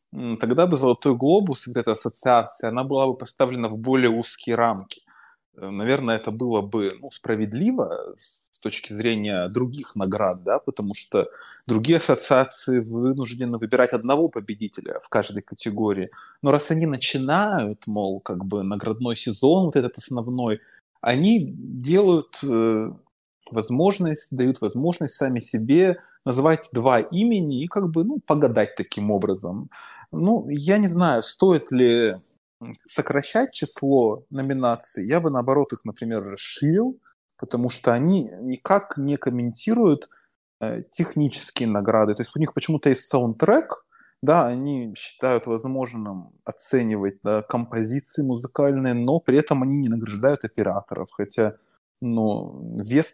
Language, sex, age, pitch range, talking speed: Ukrainian, male, 20-39, 115-150 Hz, 130 wpm